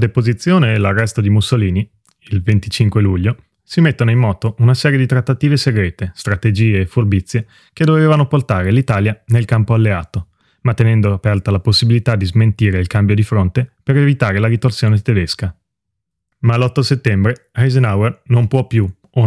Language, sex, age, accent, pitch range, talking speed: Italian, male, 30-49, native, 105-125 Hz, 155 wpm